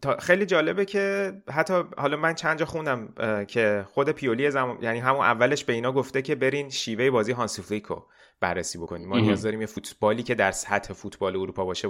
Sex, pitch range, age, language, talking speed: male, 100-130 Hz, 30-49, Persian, 190 wpm